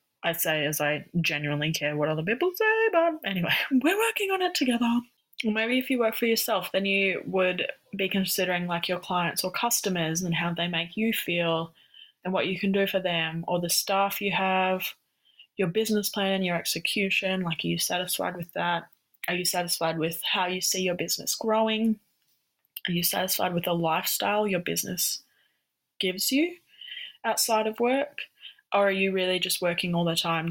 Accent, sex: Australian, female